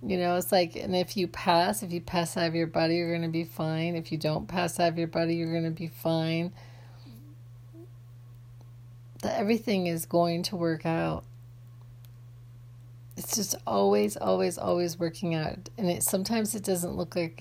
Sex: female